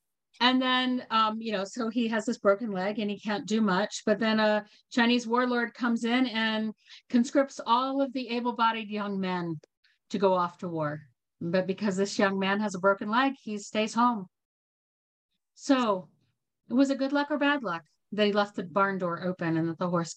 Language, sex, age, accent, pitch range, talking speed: English, female, 50-69, American, 185-245 Hz, 200 wpm